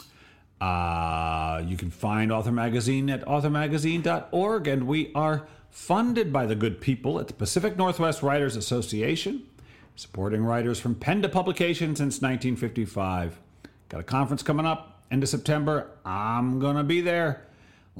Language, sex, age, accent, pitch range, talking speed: English, male, 50-69, American, 110-155 Hz, 145 wpm